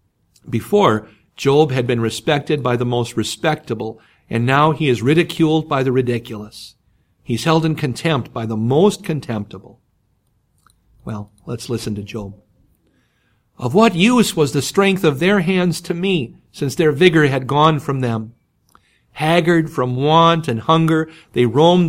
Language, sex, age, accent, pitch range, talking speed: English, male, 50-69, American, 115-150 Hz, 150 wpm